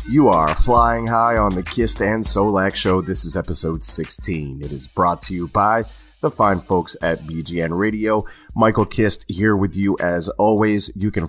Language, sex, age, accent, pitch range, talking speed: English, male, 30-49, American, 80-100 Hz, 185 wpm